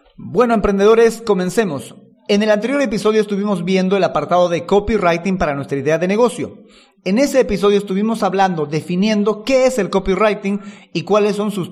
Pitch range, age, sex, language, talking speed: 175-220 Hz, 40-59, male, Spanish, 165 wpm